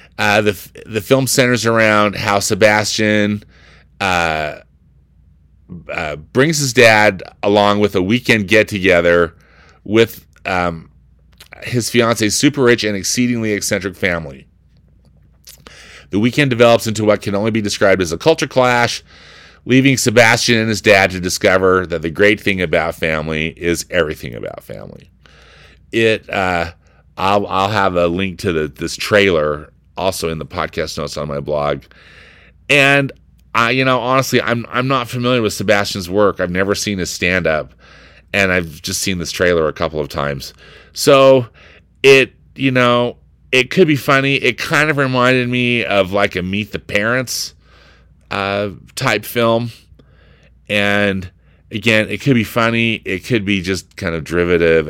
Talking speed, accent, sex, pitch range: 155 wpm, American, male, 85-115 Hz